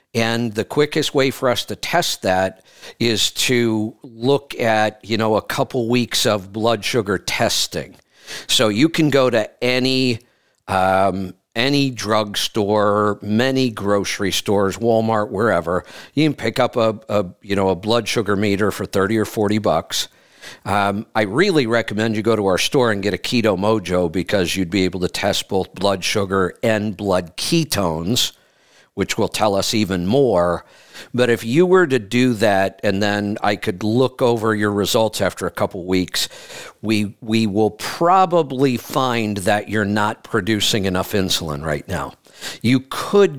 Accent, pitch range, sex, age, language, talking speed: American, 95-120 Hz, male, 50-69, English, 160 wpm